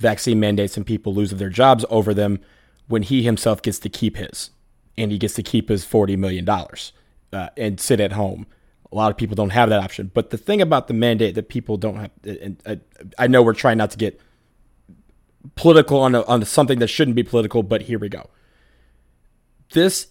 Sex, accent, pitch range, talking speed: male, American, 105-130 Hz, 205 wpm